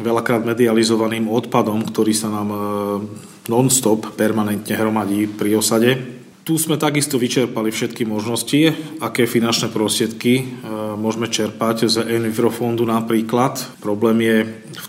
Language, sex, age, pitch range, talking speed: Slovak, male, 40-59, 110-120 Hz, 115 wpm